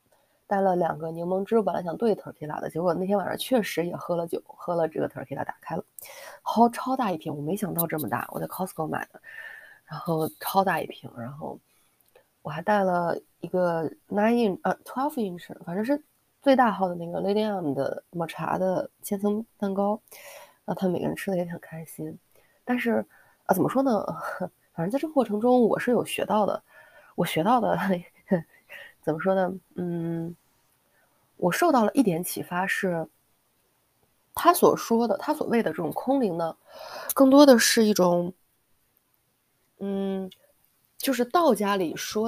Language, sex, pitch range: Chinese, female, 175-235 Hz